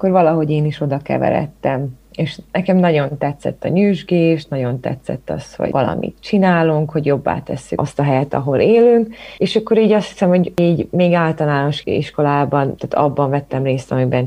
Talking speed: 170 wpm